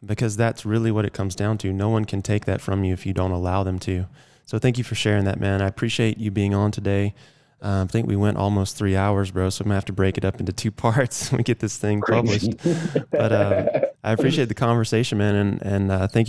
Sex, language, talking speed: male, English, 265 wpm